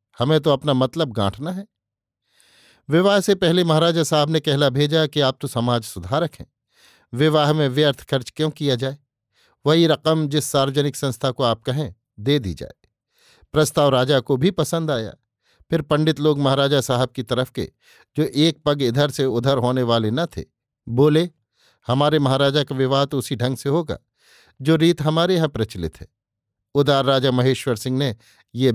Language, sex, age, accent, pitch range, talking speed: Hindi, male, 50-69, native, 125-155 Hz, 175 wpm